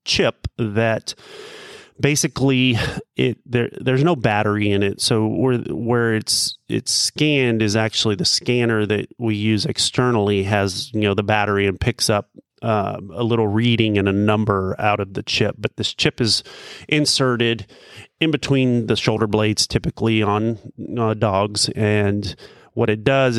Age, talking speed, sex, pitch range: 30-49, 155 wpm, male, 105-125 Hz